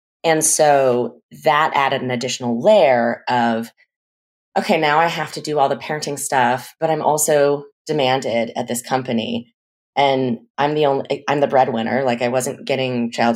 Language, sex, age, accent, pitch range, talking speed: English, female, 30-49, American, 120-155 Hz, 165 wpm